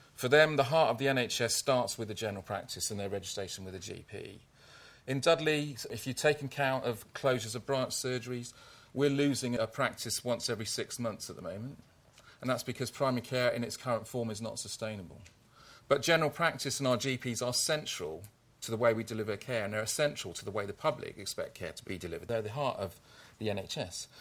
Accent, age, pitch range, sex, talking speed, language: British, 40-59, 110-140 Hz, male, 210 wpm, English